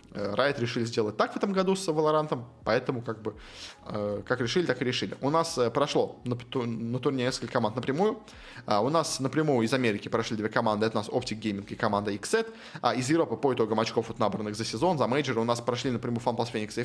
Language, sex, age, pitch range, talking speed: Russian, male, 20-39, 115-145 Hz, 205 wpm